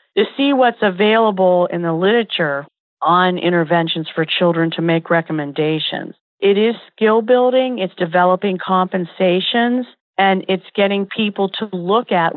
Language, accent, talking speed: English, American, 135 wpm